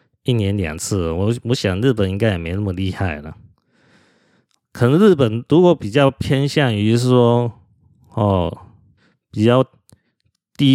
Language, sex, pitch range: Chinese, male, 95-120 Hz